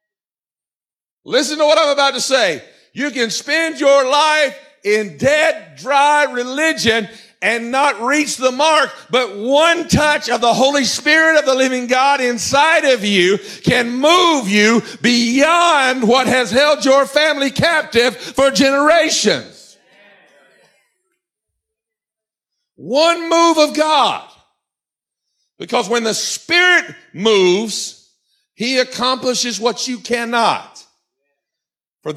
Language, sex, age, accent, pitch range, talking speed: English, male, 50-69, American, 205-285 Hz, 115 wpm